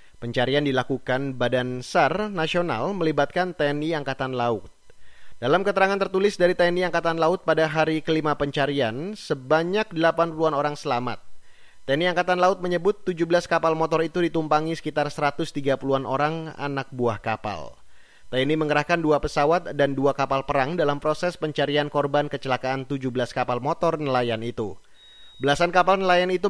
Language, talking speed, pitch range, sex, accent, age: Indonesian, 140 wpm, 125-165 Hz, male, native, 30-49